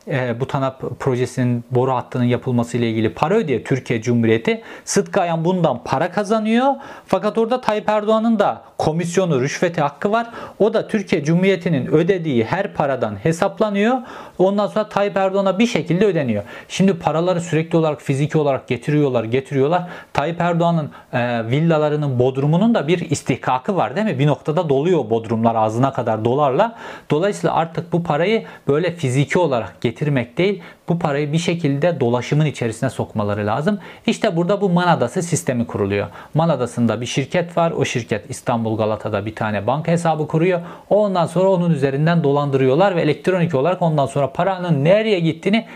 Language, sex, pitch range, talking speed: Turkish, male, 125-185 Hz, 155 wpm